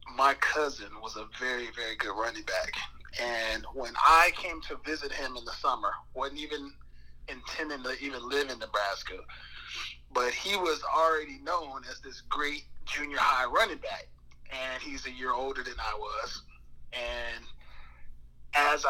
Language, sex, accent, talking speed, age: English, male, American, 155 wpm, 30-49